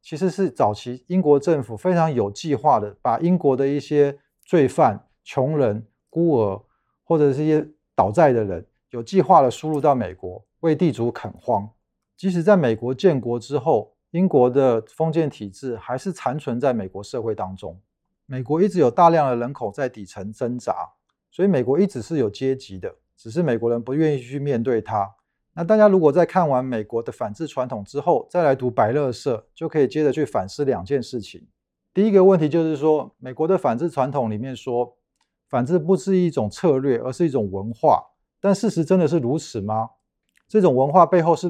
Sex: male